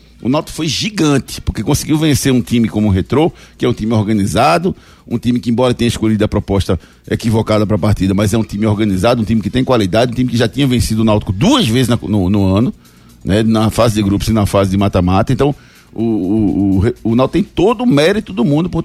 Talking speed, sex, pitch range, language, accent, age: 240 wpm, male, 110-155 Hz, Portuguese, Brazilian, 60-79